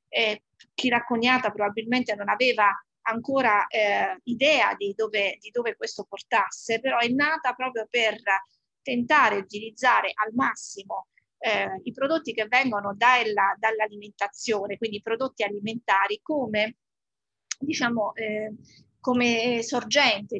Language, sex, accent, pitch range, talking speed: Italian, female, native, 210-270 Hz, 120 wpm